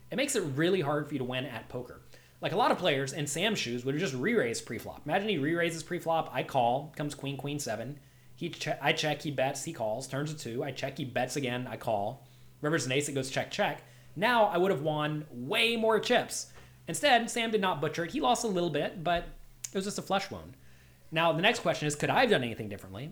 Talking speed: 250 wpm